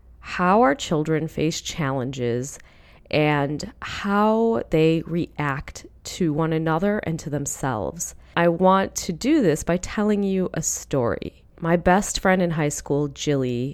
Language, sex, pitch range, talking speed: English, female, 145-195 Hz, 140 wpm